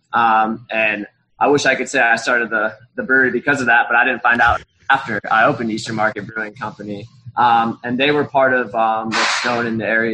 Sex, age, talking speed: male, 20-39, 230 wpm